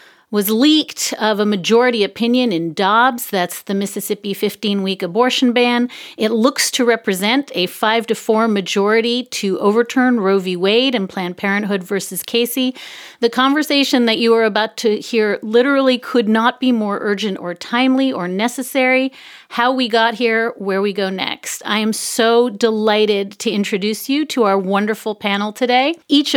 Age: 40-59